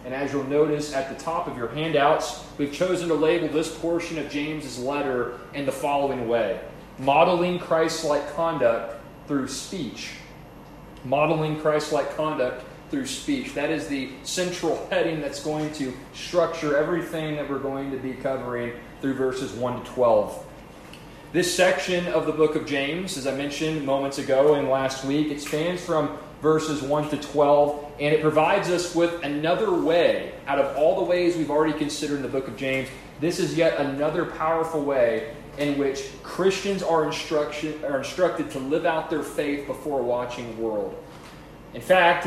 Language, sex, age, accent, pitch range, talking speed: English, male, 30-49, American, 140-165 Hz, 170 wpm